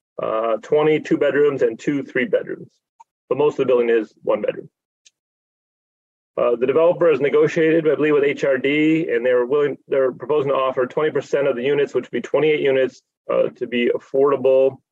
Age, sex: 30-49, male